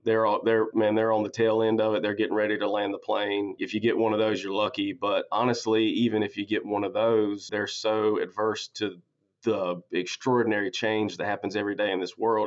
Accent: American